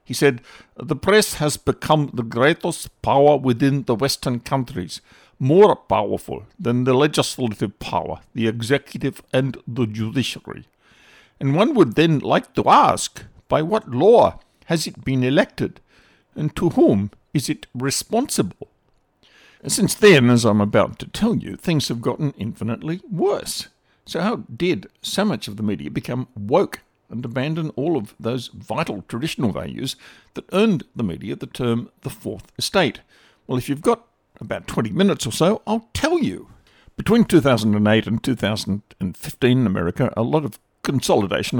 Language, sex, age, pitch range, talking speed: English, male, 60-79, 115-150 Hz, 155 wpm